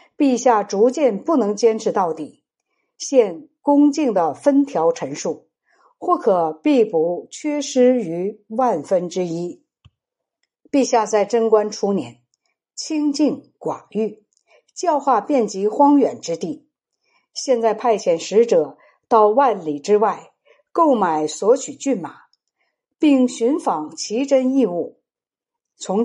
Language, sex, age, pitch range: Chinese, female, 60-79, 215-300 Hz